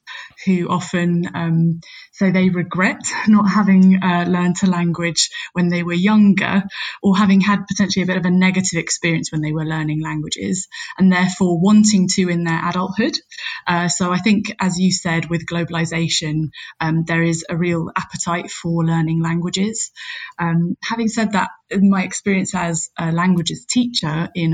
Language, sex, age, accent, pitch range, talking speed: English, female, 20-39, British, 170-195 Hz, 165 wpm